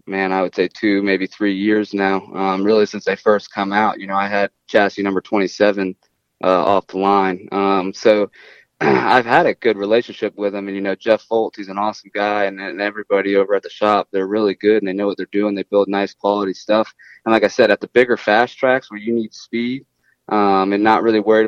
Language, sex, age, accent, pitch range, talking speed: English, male, 20-39, American, 95-105 Hz, 225 wpm